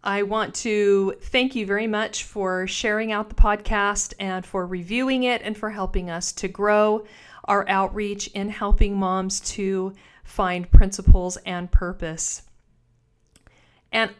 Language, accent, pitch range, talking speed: English, American, 195-230 Hz, 140 wpm